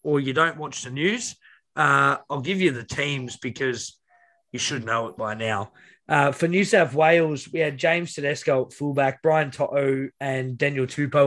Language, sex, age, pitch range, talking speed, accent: English, male, 20-39, 125-145 Hz, 185 wpm, Australian